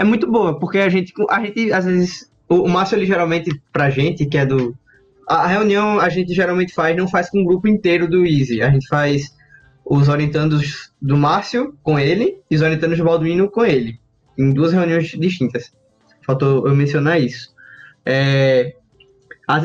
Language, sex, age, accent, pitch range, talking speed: Portuguese, male, 10-29, Brazilian, 145-185 Hz, 185 wpm